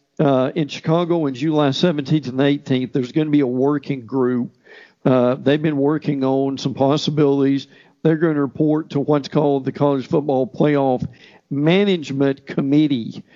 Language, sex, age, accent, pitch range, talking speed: English, male, 50-69, American, 140-170 Hz, 155 wpm